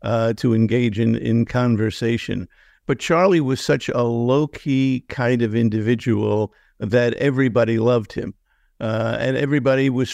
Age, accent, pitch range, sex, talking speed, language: 50-69, American, 115-140 Hz, male, 140 wpm, English